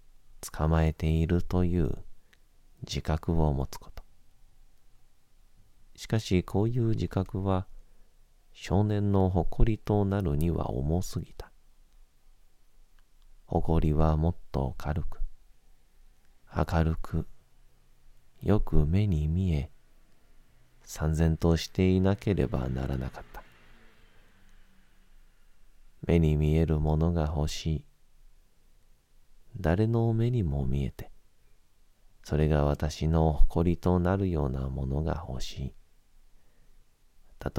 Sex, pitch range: male, 75-95 Hz